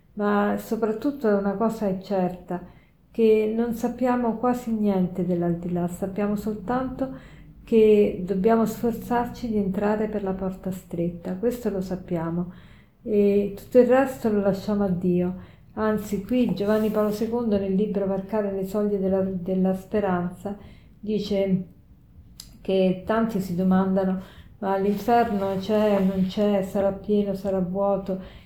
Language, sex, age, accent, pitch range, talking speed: Italian, female, 40-59, native, 190-220 Hz, 130 wpm